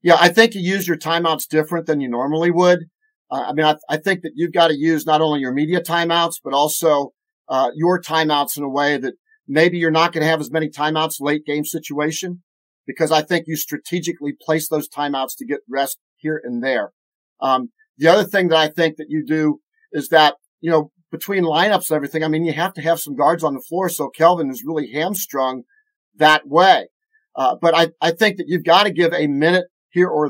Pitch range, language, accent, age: 155-185 Hz, English, American, 50-69